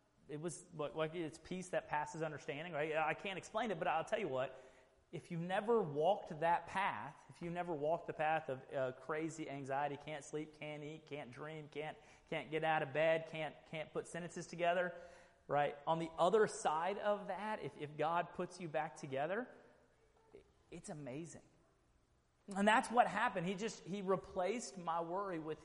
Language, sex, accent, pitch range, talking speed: English, male, American, 135-175 Hz, 180 wpm